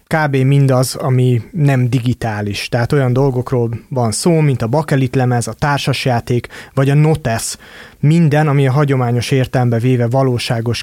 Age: 30-49